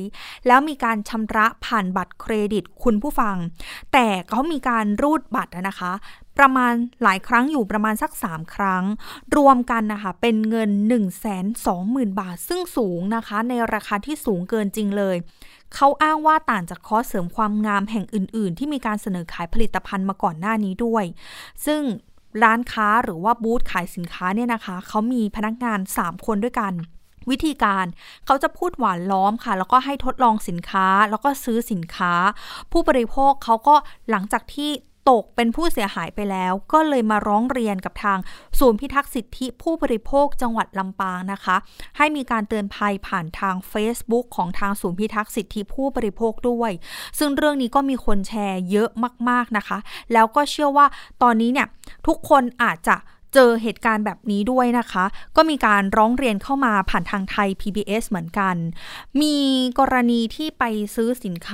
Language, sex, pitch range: Thai, female, 195-250 Hz